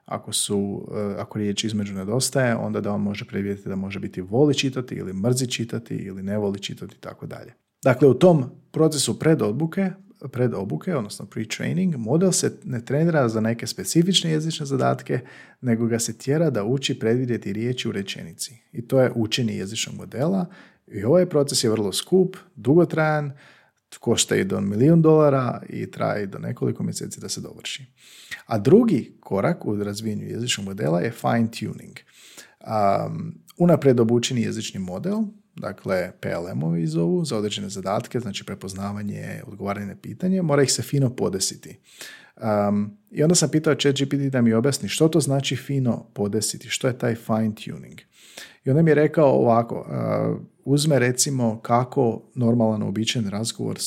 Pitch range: 105-150 Hz